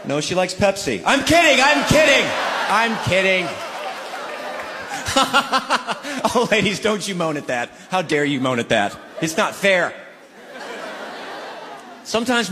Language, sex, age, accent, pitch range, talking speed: English, male, 30-49, American, 135-215 Hz, 130 wpm